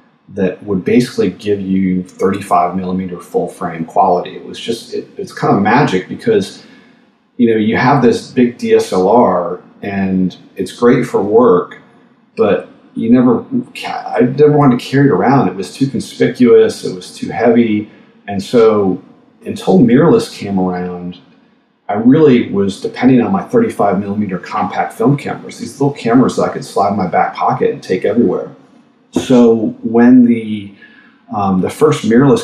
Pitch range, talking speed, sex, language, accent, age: 90-140 Hz, 160 wpm, male, English, American, 40-59